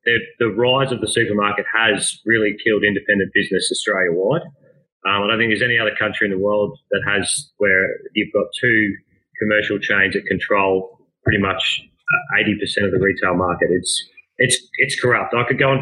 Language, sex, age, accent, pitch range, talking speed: English, male, 30-49, Australian, 110-130 Hz, 180 wpm